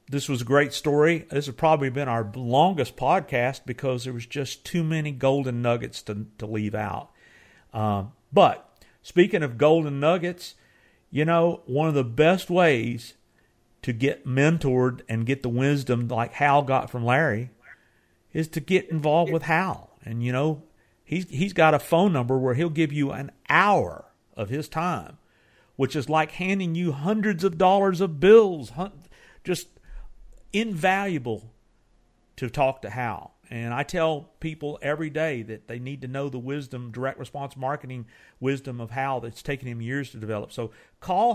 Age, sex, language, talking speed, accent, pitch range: 50-69, male, English, 170 wpm, American, 125-165 Hz